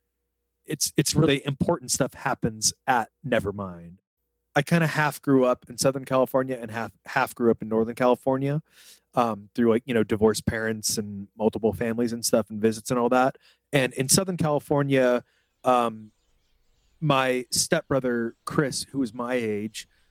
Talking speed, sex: 160 wpm, male